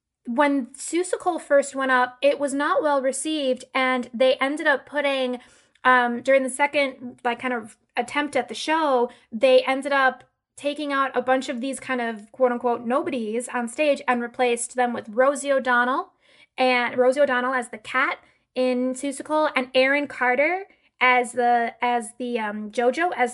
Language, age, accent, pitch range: English, 10-29, American, 255-290 Hz